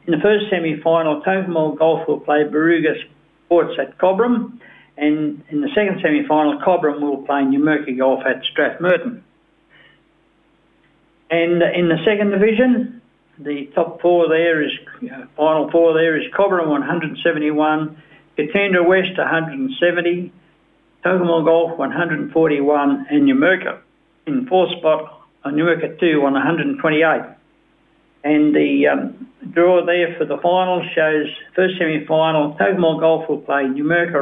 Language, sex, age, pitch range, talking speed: English, male, 60-79, 150-185 Hz, 125 wpm